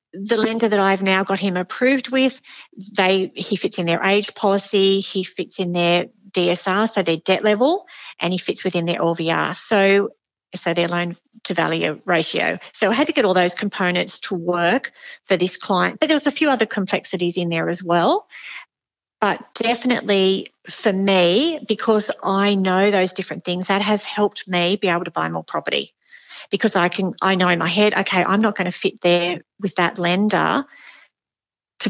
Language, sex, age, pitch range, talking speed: English, female, 40-59, 175-210 Hz, 185 wpm